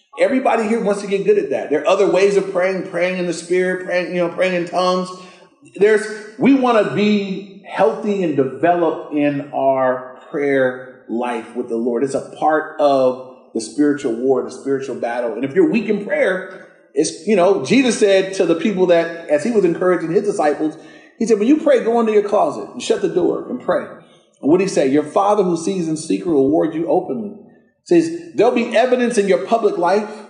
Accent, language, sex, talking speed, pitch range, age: American, English, male, 215 wpm, 165-225 Hz, 30-49